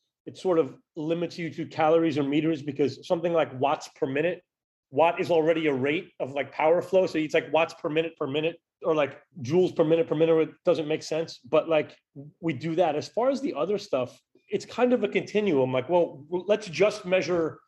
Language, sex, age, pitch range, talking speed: English, male, 30-49, 150-185 Hz, 215 wpm